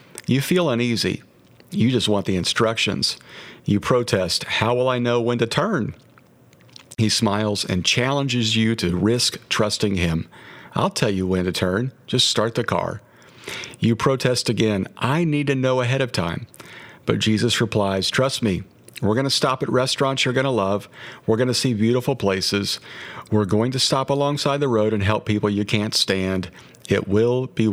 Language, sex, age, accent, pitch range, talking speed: English, male, 50-69, American, 95-125 Hz, 180 wpm